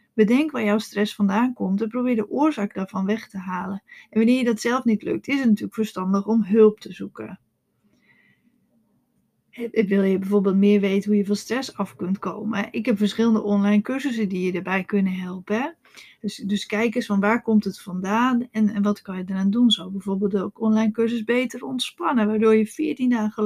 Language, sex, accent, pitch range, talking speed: Dutch, female, Dutch, 200-235 Hz, 195 wpm